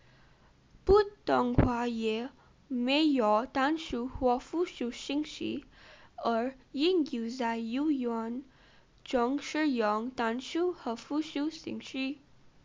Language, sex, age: Chinese, female, 10-29